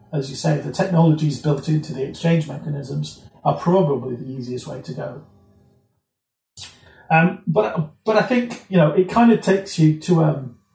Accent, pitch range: British, 145-165 Hz